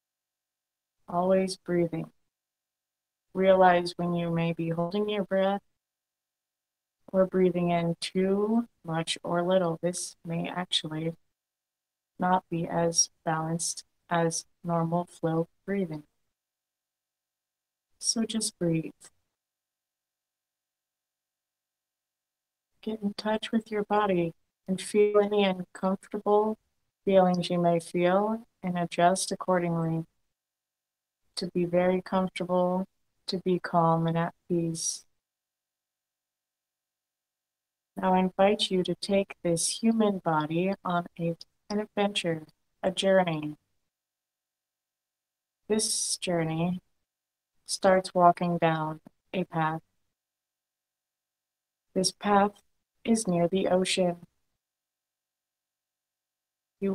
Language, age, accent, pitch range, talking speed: English, 20-39, American, 170-195 Hz, 90 wpm